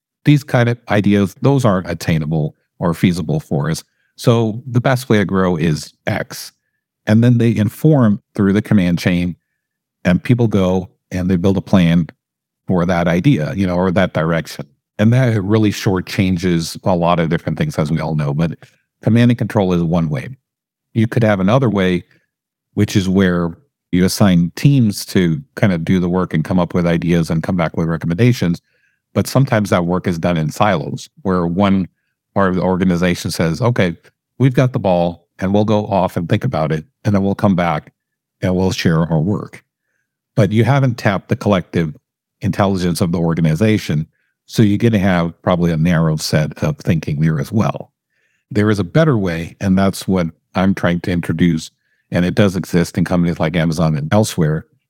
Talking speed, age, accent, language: 190 wpm, 50-69, American, English